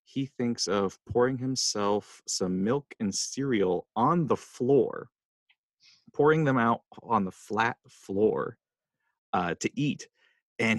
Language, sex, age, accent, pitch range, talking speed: English, male, 30-49, American, 105-165 Hz, 130 wpm